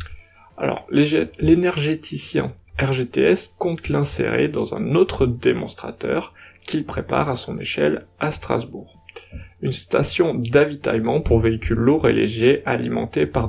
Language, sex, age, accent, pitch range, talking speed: French, male, 20-39, French, 90-145 Hz, 115 wpm